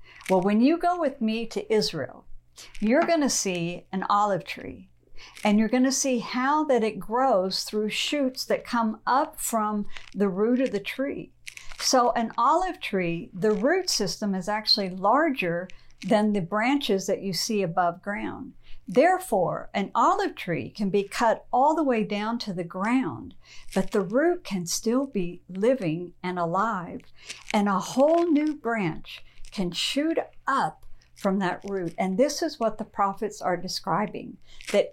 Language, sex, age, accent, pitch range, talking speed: English, female, 60-79, American, 185-255 Hz, 165 wpm